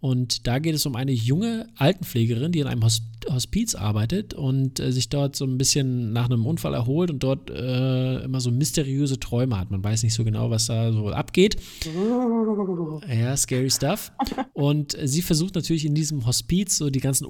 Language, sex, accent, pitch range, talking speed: German, male, German, 115-140 Hz, 185 wpm